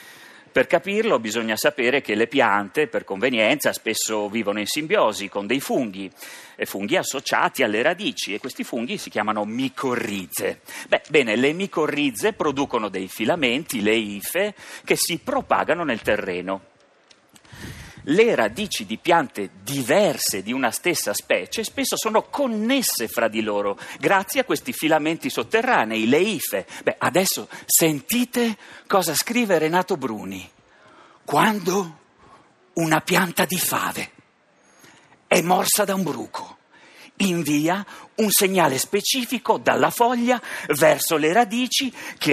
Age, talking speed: 40-59, 125 wpm